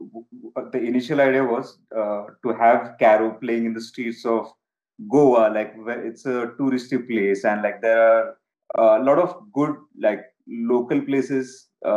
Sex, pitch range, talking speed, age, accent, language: male, 115-140 Hz, 155 wpm, 30-49, Indian, English